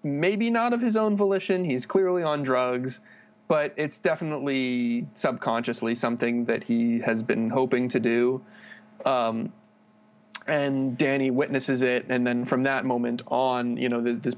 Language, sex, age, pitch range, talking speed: English, male, 20-39, 120-145 Hz, 150 wpm